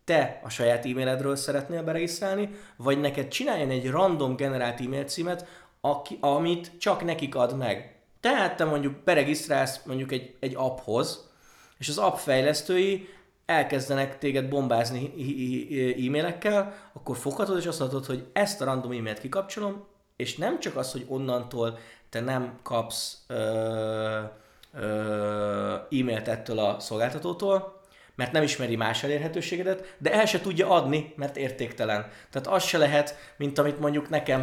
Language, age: Hungarian, 20-39